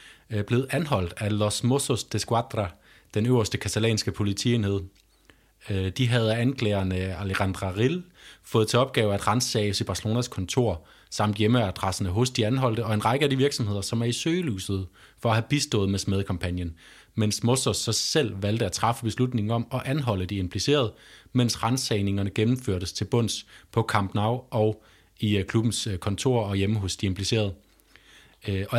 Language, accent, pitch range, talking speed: Danish, native, 100-125 Hz, 160 wpm